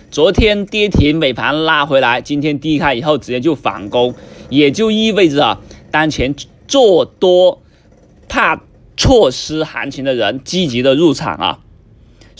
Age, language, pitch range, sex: 20-39, Chinese, 125-165 Hz, male